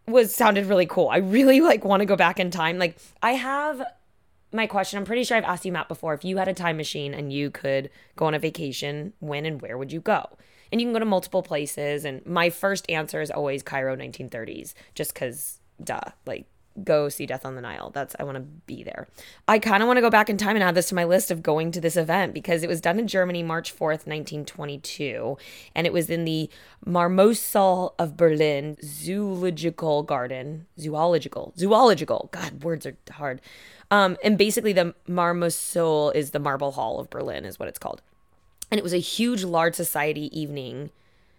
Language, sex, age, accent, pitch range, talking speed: English, female, 20-39, American, 150-195 Hz, 210 wpm